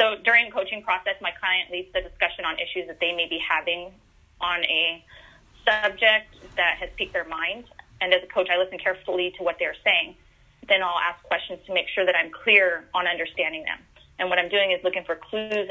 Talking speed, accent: 215 wpm, American